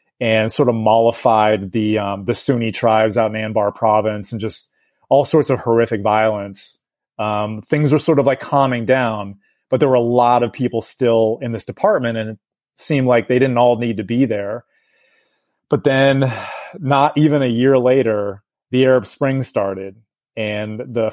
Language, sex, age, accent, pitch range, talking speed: English, male, 30-49, American, 110-130 Hz, 180 wpm